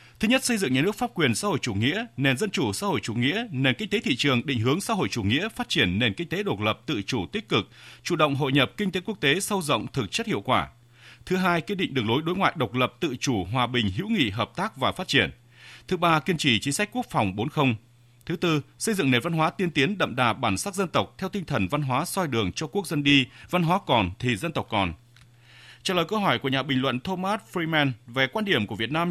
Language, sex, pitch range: Vietnamese, male, 120-185 Hz